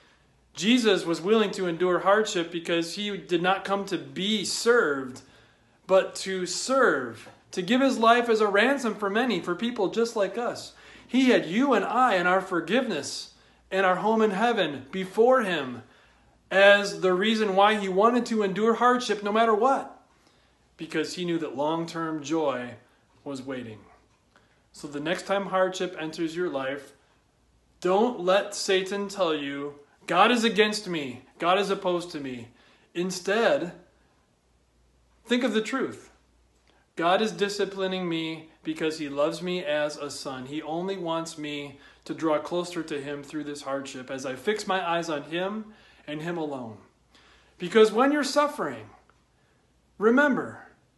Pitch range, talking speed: 150-215 Hz, 155 wpm